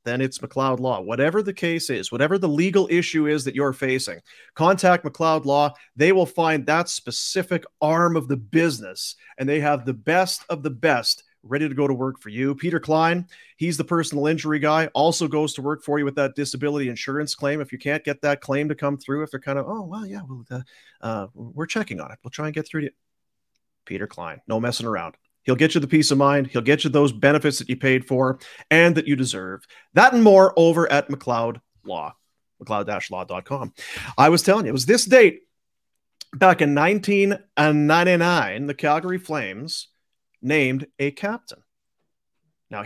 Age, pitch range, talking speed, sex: 40-59, 135-170 Hz, 200 wpm, male